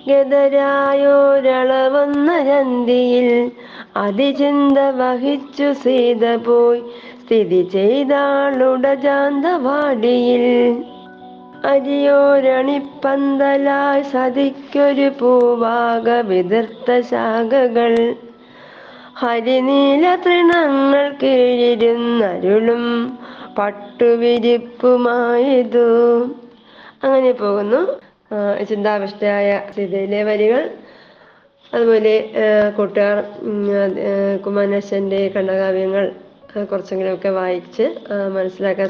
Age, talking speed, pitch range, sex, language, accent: 20-39, 35 wpm, 195-255 Hz, female, Malayalam, native